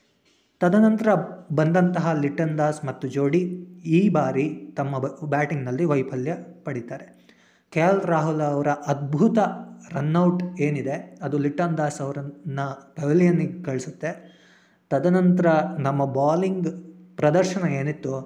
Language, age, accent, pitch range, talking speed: Kannada, 20-39, native, 135-170 Hz, 100 wpm